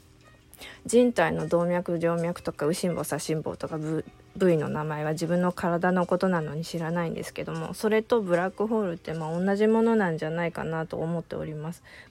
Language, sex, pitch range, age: Japanese, female, 160-195 Hz, 20-39